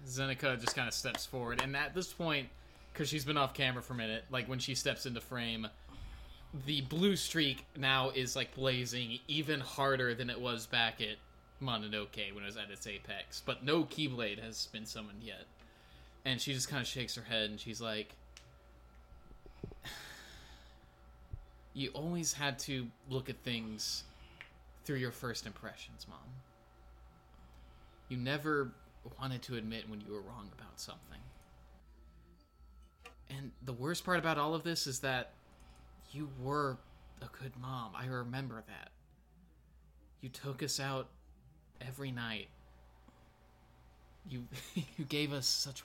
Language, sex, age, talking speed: English, male, 20-39, 150 wpm